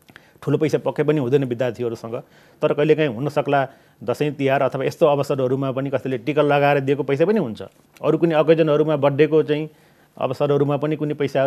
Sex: male